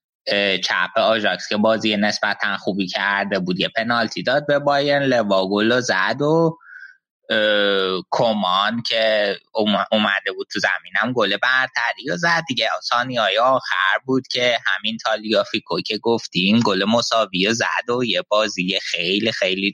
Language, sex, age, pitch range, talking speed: Persian, male, 20-39, 105-125 Hz, 135 wpm